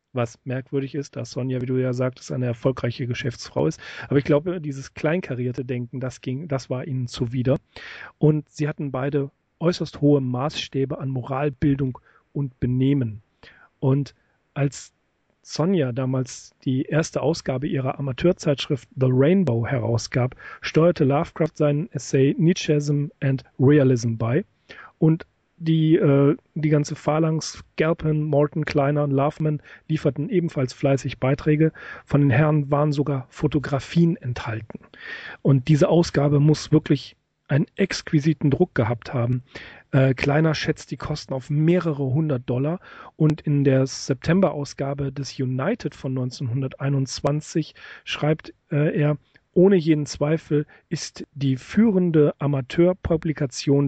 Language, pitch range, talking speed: German, 130-155 Hz, 130 wpm